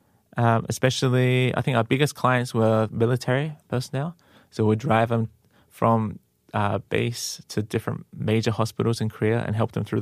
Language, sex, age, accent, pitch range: Korean, male, 20-39, Australian, 110-125 Hz